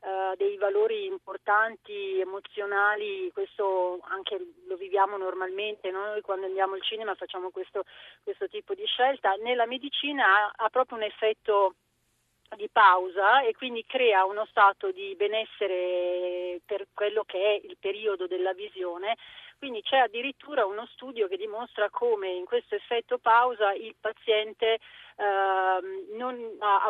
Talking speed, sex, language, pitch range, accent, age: 140 wpm, female, Italian, 195-245 Hz, native, 40-59